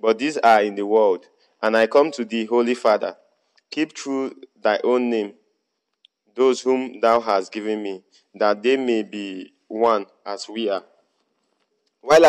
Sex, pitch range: male, 105-130 Hz